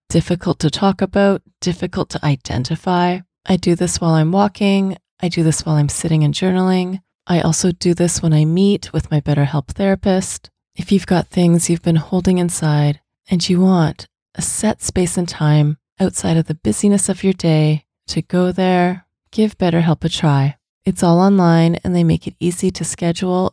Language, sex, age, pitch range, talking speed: English, female, 30-49, 160-190 Hz, 185 wpm